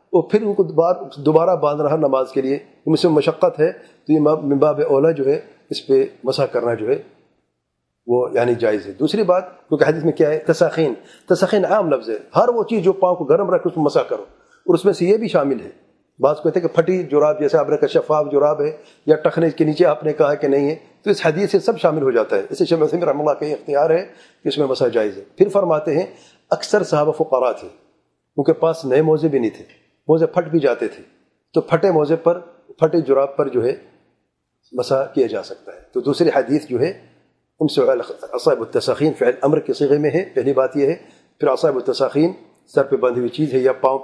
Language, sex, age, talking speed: English, male, 40-59, 155 wpm